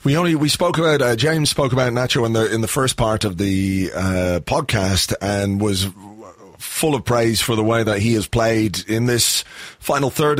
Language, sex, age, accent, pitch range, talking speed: English, male, 30-49, British, 110-135 Hz, 210 wpm